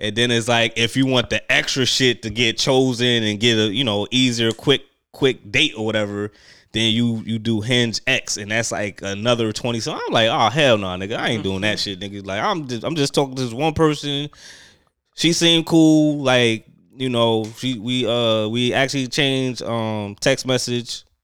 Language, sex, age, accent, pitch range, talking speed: English, male, 20-39, American, 105-130 Hz, 210 wpm